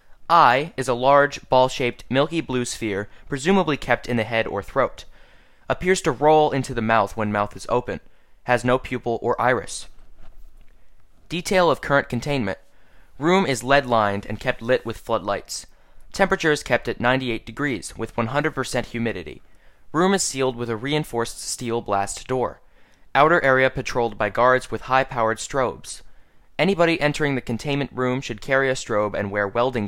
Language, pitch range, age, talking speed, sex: English, 115-140 Hz, 20-39, 160 wpm, male